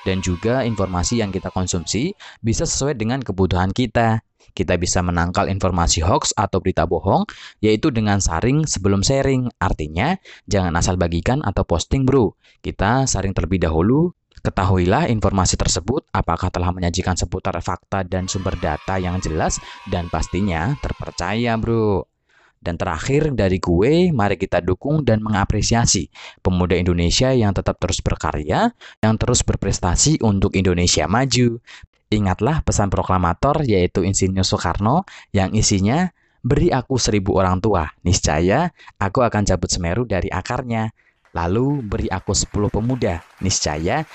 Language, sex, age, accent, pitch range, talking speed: Indonesian, male, 20-39, native, 90-115 Hz, 135 wpm